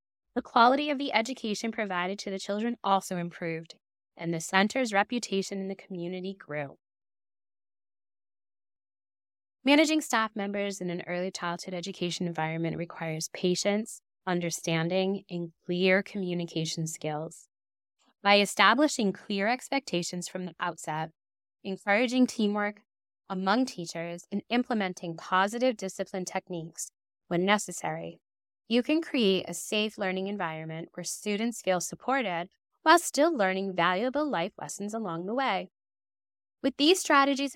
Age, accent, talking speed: 10-29, American, 120 wpm